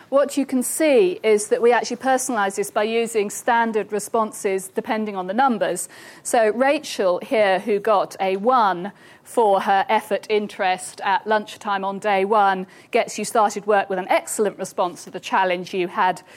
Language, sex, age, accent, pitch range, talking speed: English, female, 50-69, British, 190-235 Hz, 170 wpm